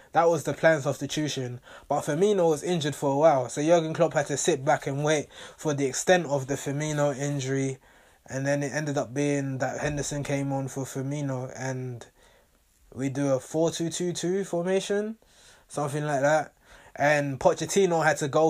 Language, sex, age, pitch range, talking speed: English, male, 20-39, 140-175 Hz, 175 wpm